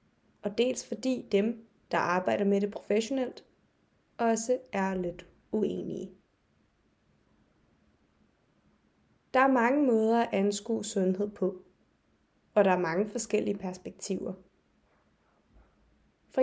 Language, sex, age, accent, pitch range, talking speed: Danish, female, 20-39, native, 195-240 Hz, 100 wpm